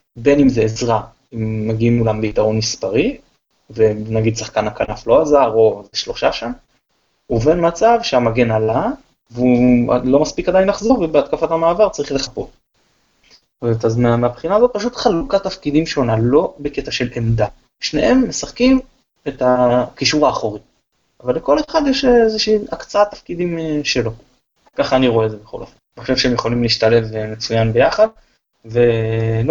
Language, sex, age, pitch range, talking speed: Hebrew, male, 20-39, 115-150 Hz, 140 wpm